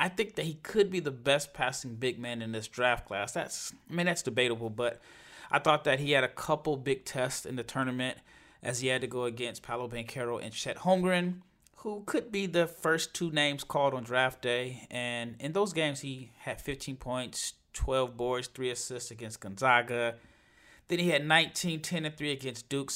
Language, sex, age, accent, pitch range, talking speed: English, male, 30-49, American, 120-155 Hz, 205 wpm